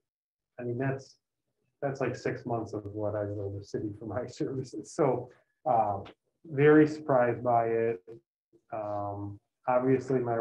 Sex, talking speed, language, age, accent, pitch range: male, 145 wpm, English, 30-49, American, 105-120 Hz